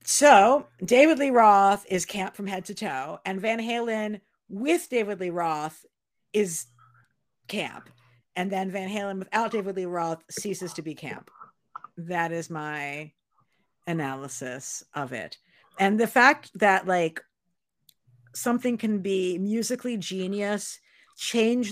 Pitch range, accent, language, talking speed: 175-220 Hz, American, English, 135 wpm